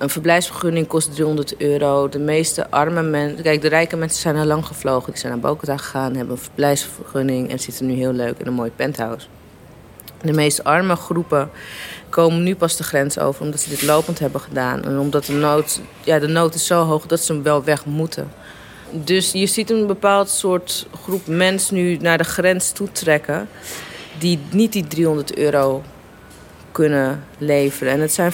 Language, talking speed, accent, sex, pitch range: Dutch, 190 wpm, Dutch, female, 145-165 Hz